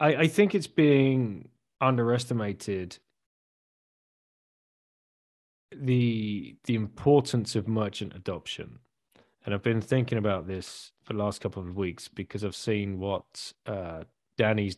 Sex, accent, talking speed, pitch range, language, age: male, British, 120 wpm, 95-115 Hz, English, 30-49